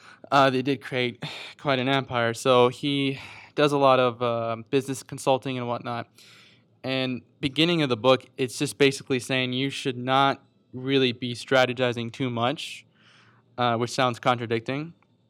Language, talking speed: English, 155 wpm